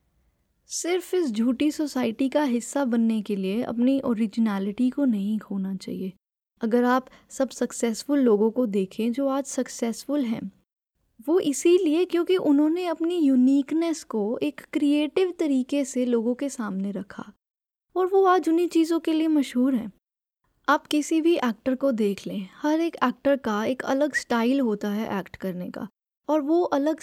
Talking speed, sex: 160 wpm, female